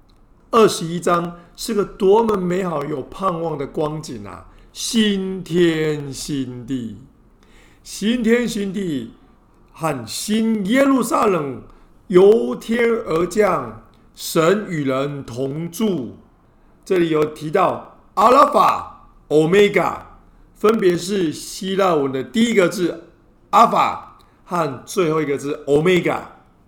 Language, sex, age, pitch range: Chinese, male, 50-69, 145-215 Hz